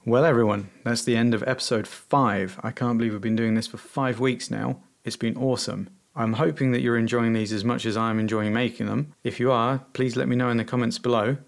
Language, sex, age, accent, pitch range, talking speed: English, male, 30-49, British, 110-130 Hz, 240 wpm